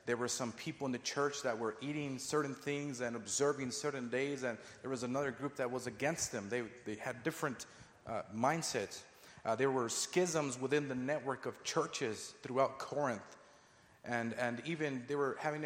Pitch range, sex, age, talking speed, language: 120-150 Hz, male, 30-49, 185 wpm, English